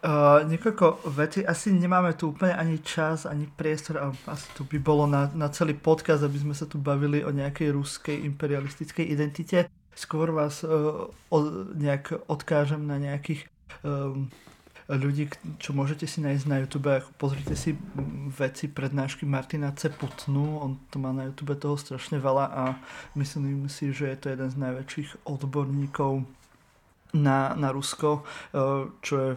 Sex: male